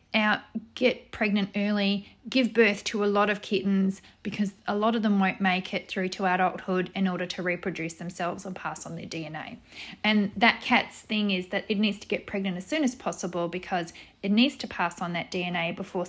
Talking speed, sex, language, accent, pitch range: 210 wpm, female, English, Australian, 180-215 Hz